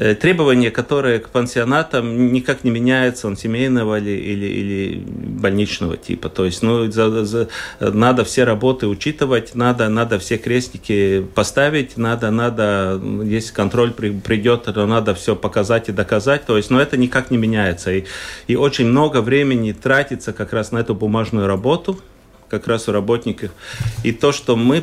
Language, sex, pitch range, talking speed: Russian, male, 110-130 Hz, 160 wpm